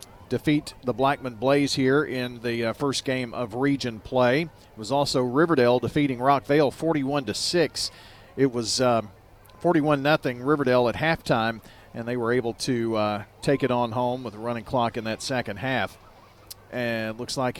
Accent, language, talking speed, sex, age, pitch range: American, English, 165 wpm, male, 40-59, 110-145 Hz